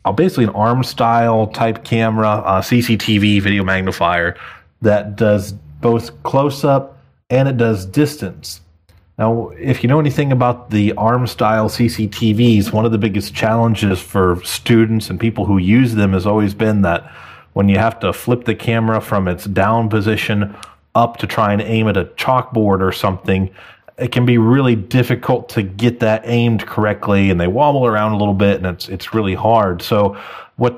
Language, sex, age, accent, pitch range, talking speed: English, male, 30-49, American, 100-120 Hz, 175 wpm